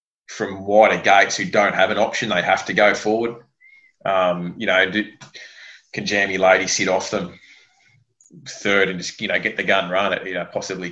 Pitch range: 95-105 Hz